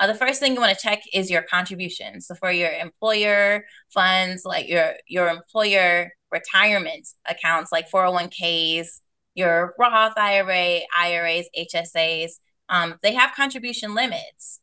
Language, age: English, 20-39